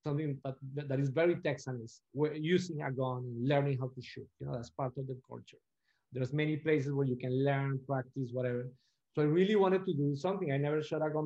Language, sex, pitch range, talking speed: English, male, 135-160 Hz, 220 wpm